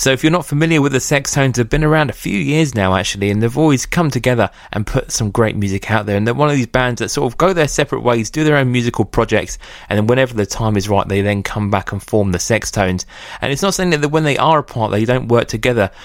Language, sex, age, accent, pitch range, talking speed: English, male, 20-39, British, 100-130 Hz, 280 wpm